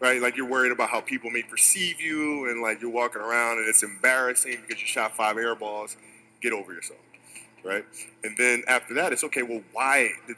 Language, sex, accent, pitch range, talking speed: English, male, American, 110-130 Hz, 215 wpm